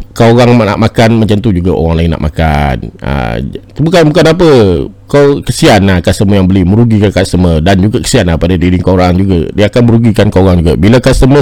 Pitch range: 90-125 Hz